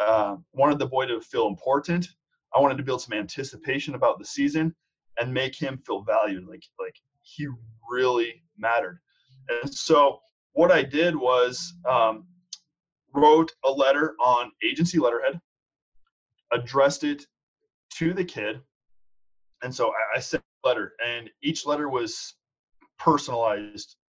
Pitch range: 125-180 Hz